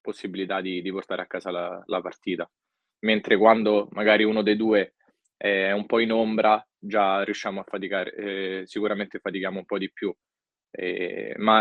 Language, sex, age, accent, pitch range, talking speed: Italian, male, 20-39, native, 95-110 Hz, 170 wpm